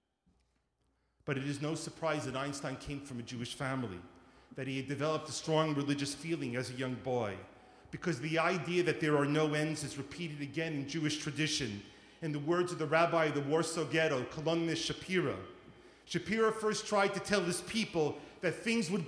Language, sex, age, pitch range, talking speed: English, male, 40-59, 135-190 Hz, 190 wpm